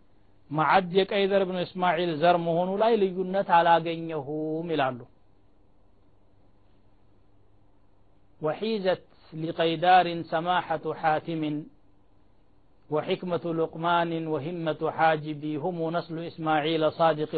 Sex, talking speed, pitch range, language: male, 80 wpm, 130-170 Hz, Amharic